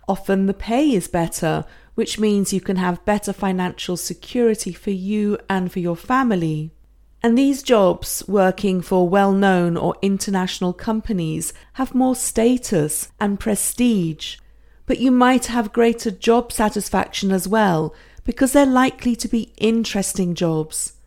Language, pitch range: English, 185-225 Hz